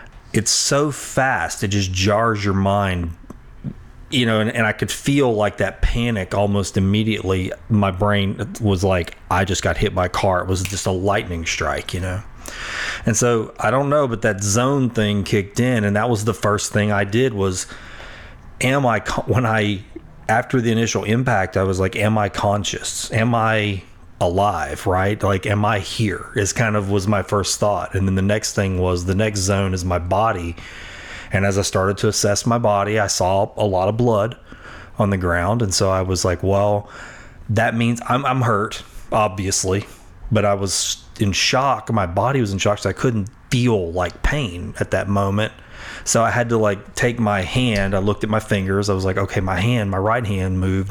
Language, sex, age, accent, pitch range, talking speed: English, male, 30-49, American, 95-115 Hz, 200 wpm